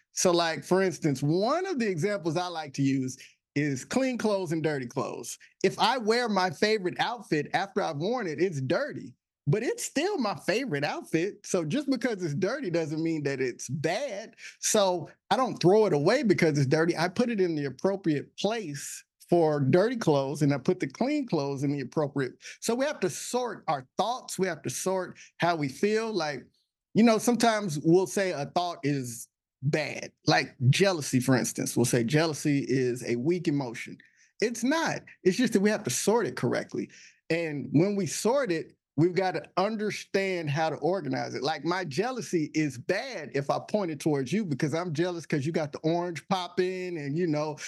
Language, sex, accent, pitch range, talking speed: English, male, American, 150-205 Hz, 195 wpm